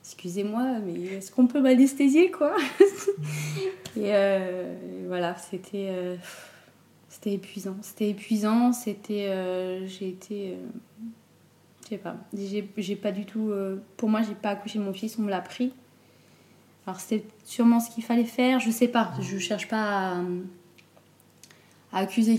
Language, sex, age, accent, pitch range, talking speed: French, female, 20-39, French, 185-220 Hz, 145 wpm